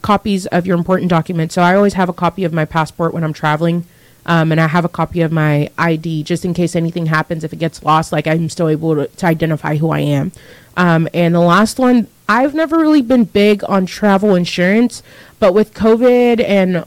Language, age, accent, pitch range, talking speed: English, 30-49, American, 165-195 Hz, 220 wpm